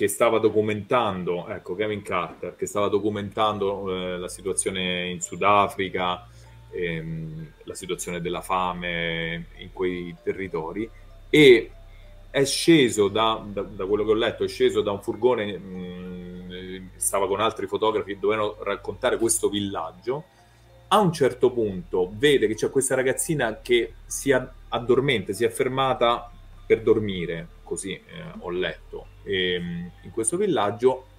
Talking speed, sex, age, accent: 140 wpm, male, 30-49, native